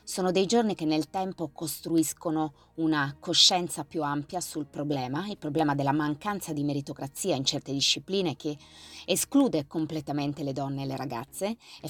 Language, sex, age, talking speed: Italian, female, 20-39, 155 wpm